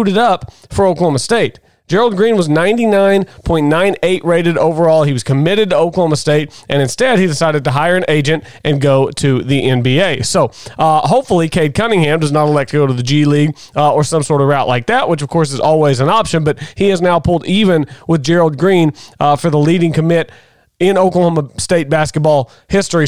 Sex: male